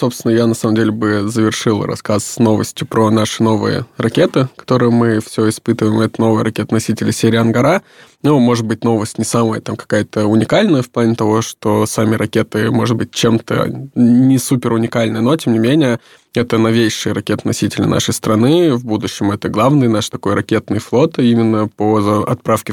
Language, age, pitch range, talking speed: Russian, 20-39, 110-120 Hz, 170 wpm